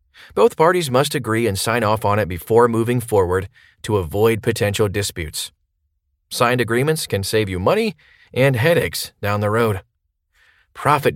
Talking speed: 150 wpm